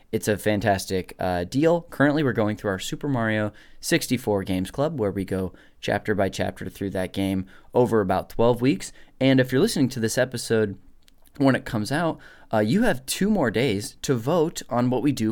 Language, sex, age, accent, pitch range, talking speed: English, male, 20-39, American, 105-145 Hz, 200 wpm